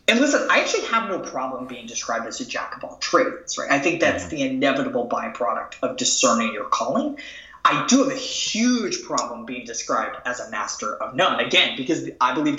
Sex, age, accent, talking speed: male, 20-39, American, 205 wpm